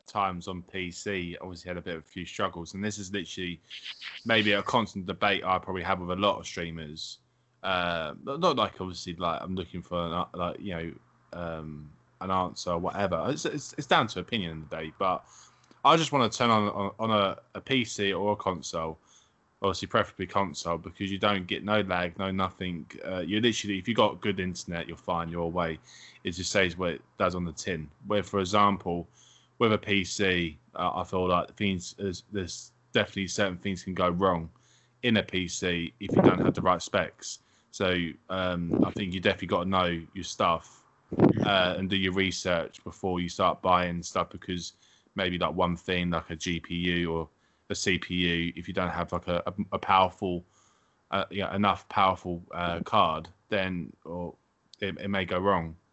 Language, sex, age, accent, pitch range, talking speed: English, male, 20-39, British, 85-100 Hz, 195 wpm